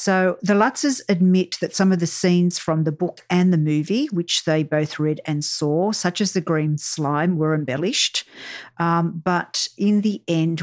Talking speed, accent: 185 wpm, Australian